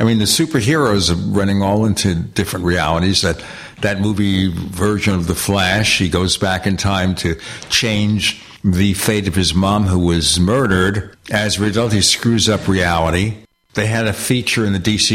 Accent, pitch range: American, 90-105 Hz